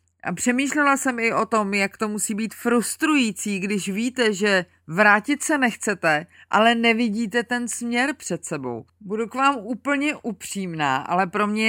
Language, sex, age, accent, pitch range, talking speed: Czech, female, 30-49, native, 190-240 Hz, 160 wpm